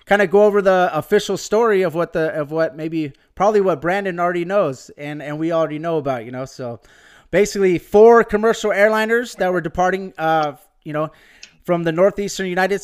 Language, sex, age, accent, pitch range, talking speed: English, male, 30-49, American, 165-200 Hz, 190 wpm